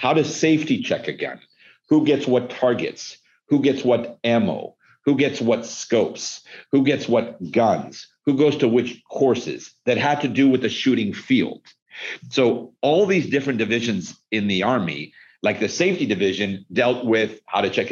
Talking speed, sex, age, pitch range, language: 175 wpm, male, 50-69, 105-135 Hz, English